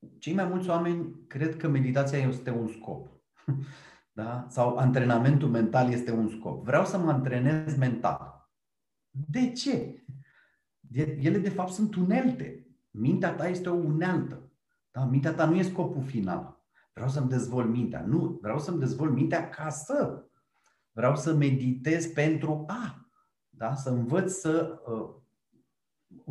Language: Romanian